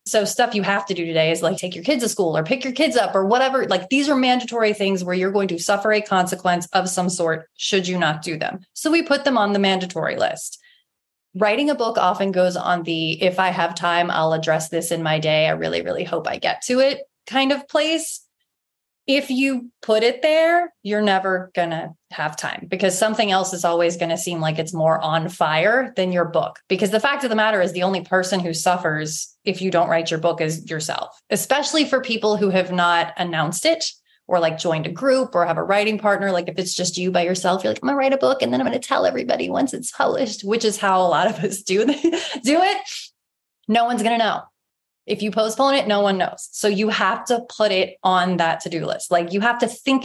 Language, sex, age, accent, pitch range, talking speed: English, female, 30-49, American, 175-240 Hz, 245 wpm